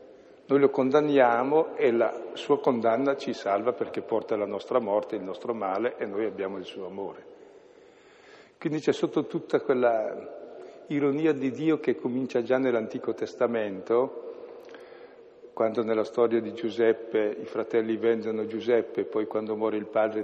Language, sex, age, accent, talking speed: Italian, male, 50-69, native, 150 wpm